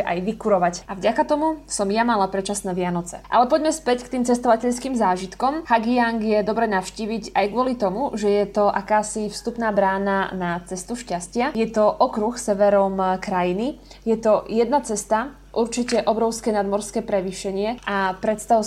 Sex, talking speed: female, 155 wpm